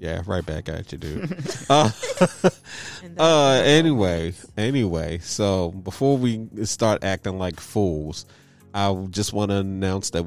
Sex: male